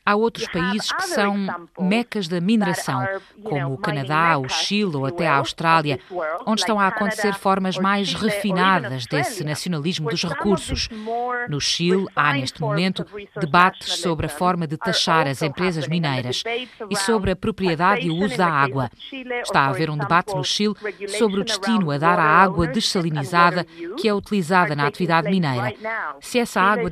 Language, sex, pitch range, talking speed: Portuguese, female, 165-205 Hz, 165 wpm